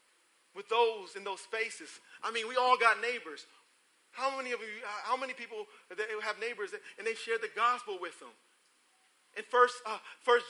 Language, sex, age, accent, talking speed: English, male, 40-59, American, 185 wpm